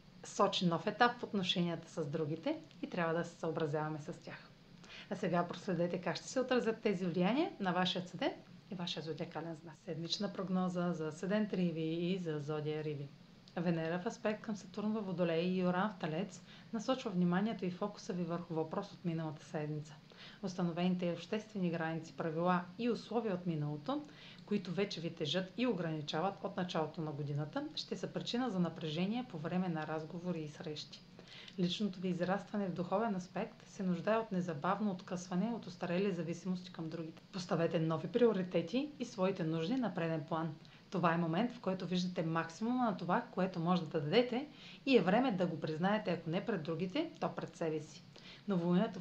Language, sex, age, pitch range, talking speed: Bulgarian, female, 40-59, 165-210 Hz, 175 wpm